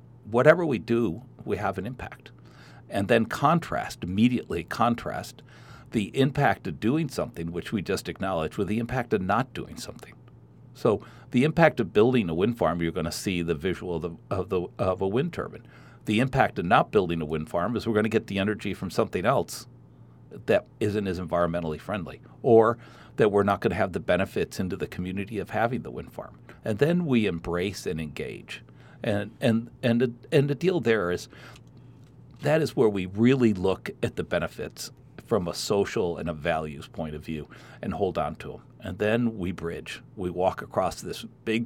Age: 60-79